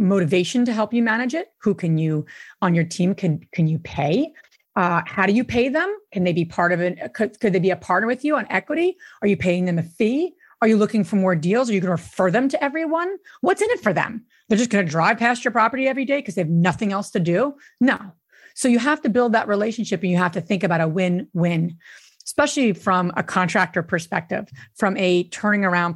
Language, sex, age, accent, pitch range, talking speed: English, female, 30-49, American, 180-265 Hz, 245 wpm